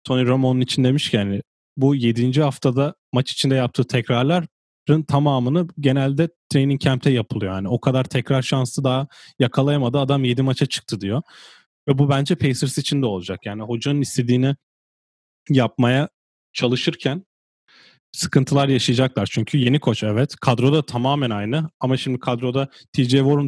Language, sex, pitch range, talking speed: Turkish, male, 120-140 Hz, 145 wpm